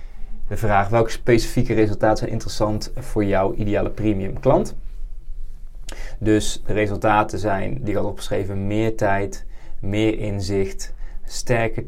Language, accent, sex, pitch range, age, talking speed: Dutch, Dutch, male, 100-115 Hz, 20-39, 125 wpm